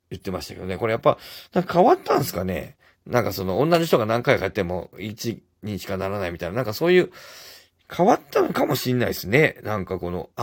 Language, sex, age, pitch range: Japanese, male, 40-59, 95-145 Hz